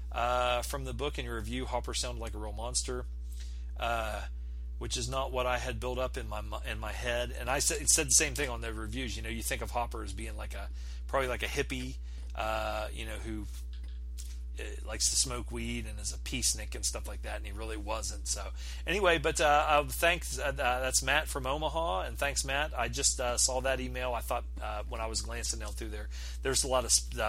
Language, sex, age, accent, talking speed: English, male, 40-59, American, 235 wpm